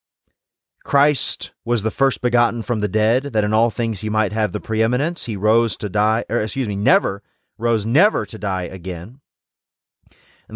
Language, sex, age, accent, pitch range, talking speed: English, male, 30-49, American, 105-145 Hz, 175 wpm